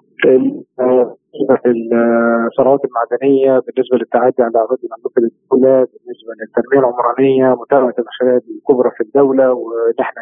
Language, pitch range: Arabic, 120-160 Hz